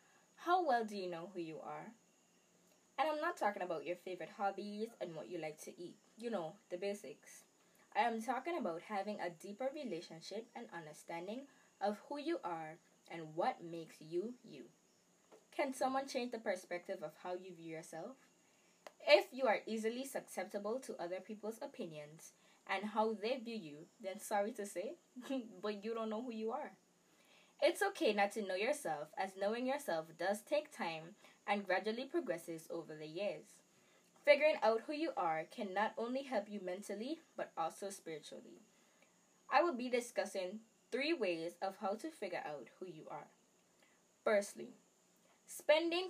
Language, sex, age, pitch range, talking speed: English, female, 10-29, 175-255 Hz, 165 wpm